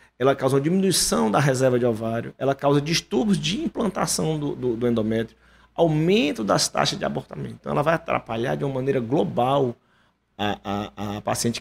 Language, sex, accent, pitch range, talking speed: Portuguese, male, Brazilian, 130-195 Hz, 175 wpm